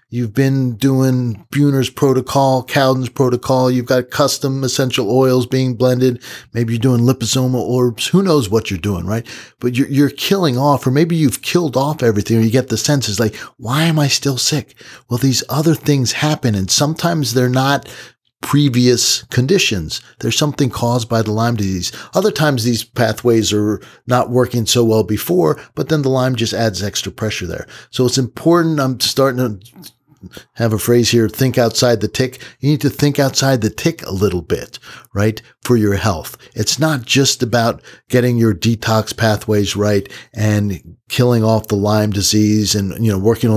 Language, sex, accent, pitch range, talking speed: English, male, American, 110-130 Hz, 180 wpm